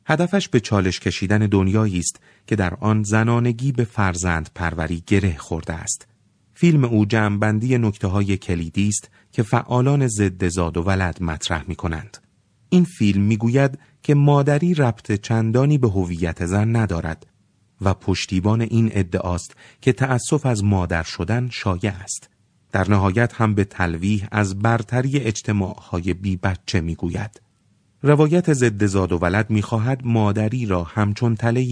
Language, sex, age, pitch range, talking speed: Persian, male, 30-49, 90-115 Hz, 145 wpm